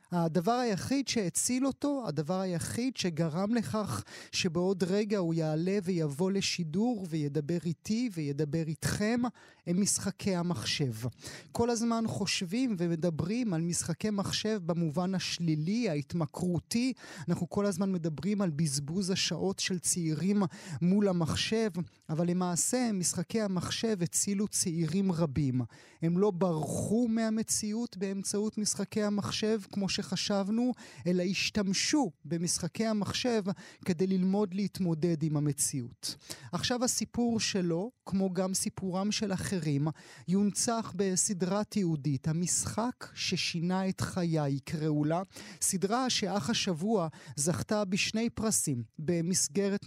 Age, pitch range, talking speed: 30-49, 165-205 Hz, 110 wpm